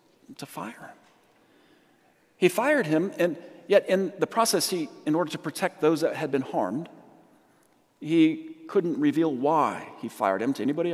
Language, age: English, 50-69